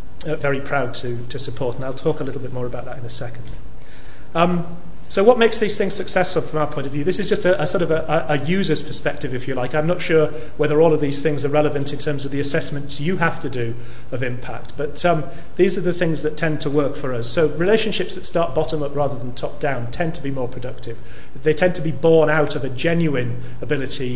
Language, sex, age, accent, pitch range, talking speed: English, male, 40-59, British, 130-160 Hz, 250 wpm